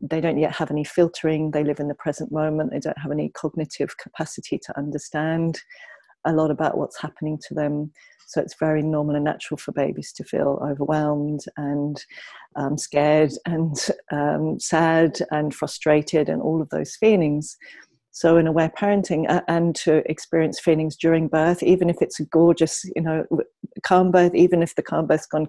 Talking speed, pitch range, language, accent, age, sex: 185 wpm, 150-170 Hz, English, British, 40-59, female